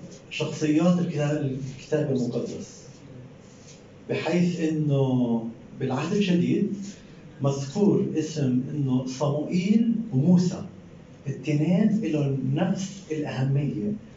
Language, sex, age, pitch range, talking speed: Arabic, male, 50-69, 140-180 Hz, 70 wpm